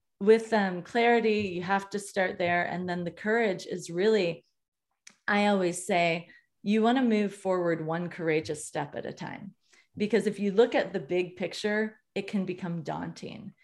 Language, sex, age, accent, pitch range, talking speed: English, female, 30-49, American, 175-215 Hz, 170 wpm